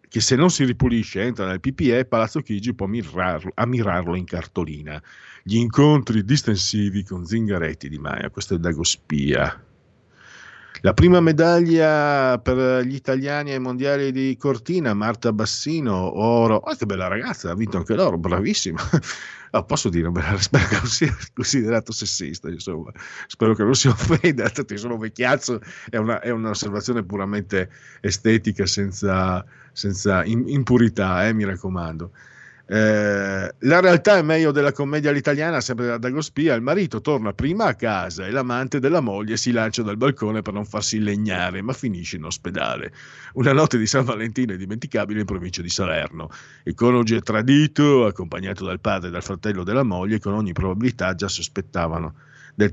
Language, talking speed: Italian, 160 wpm